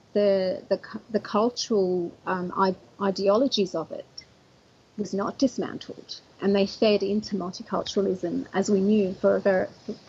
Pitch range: 185-225 Hz